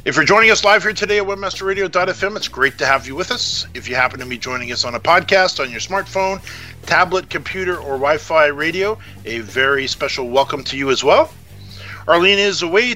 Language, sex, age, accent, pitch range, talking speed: English, male, 50-69, American, 135-195 Hz, 210 wpm